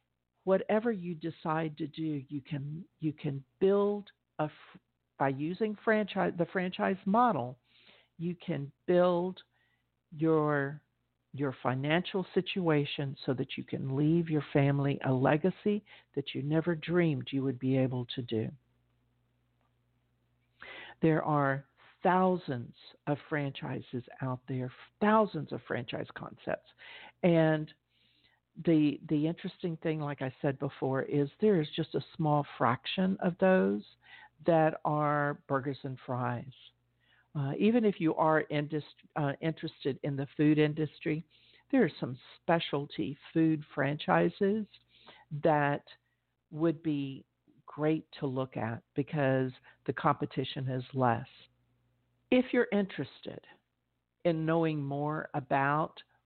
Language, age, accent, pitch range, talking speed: English, 50-69, American, 135-165 Hz, 125 wpm